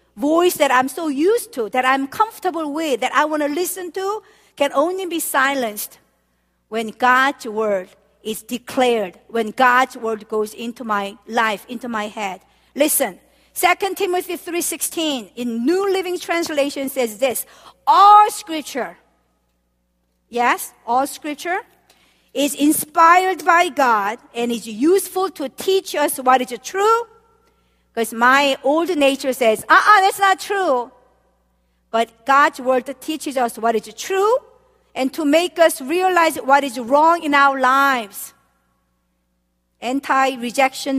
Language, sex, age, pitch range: Korean, female, 50-69, 215-325 Hz